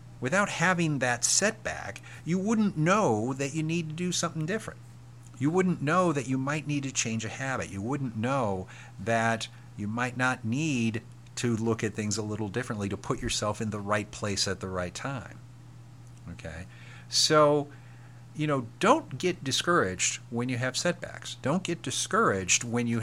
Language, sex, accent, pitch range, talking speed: English, male, American, 110-130 Hz, 175 wpm